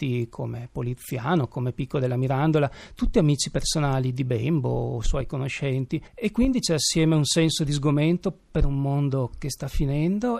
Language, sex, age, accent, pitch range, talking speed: Italian, male, 40-59, native, 125-155 Hz, 160 wpm